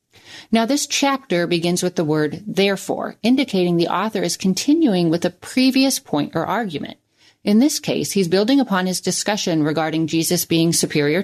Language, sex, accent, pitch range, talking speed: English, female, American, 155-220 Hz, 165 wpm